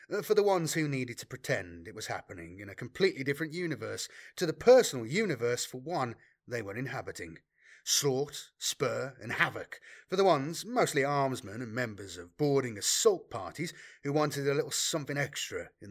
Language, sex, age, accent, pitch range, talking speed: English, male, 30-49, British, 120-165 Hz, 175 wpm